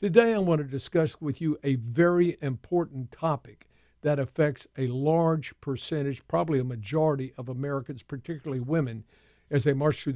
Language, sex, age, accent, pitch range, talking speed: English, male, 50-69, American, 125-155 Hz, 160 wpm